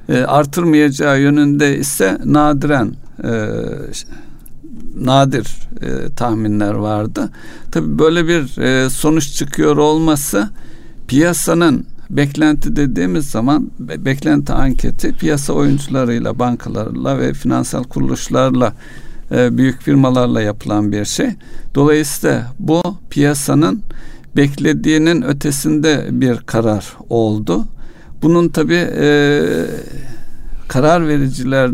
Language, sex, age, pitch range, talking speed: Turkish, male, 60-79, 125-150 Hz, 80 wpm